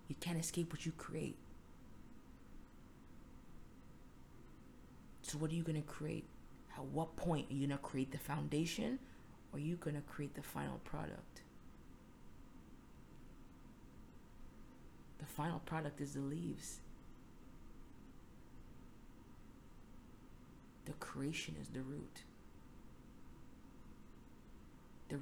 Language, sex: English, female